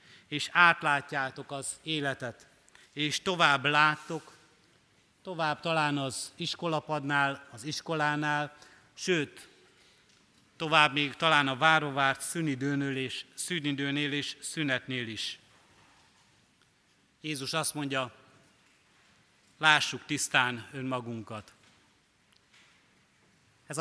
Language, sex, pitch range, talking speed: Hungarian, male, 135-155 Hz, 75 wpm